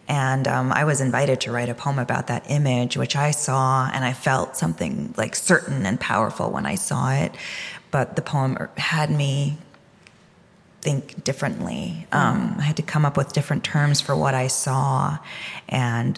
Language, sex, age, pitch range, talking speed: English, female, 20-39, 140-175 Hz, 180 wpm